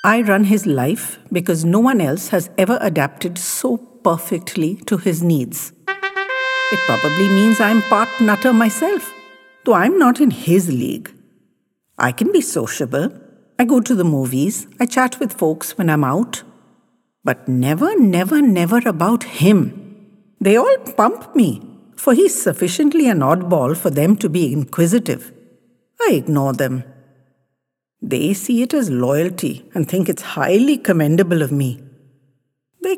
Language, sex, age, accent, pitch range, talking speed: English, female, 60-79, Indian, 150-240 Hz, 155 wpm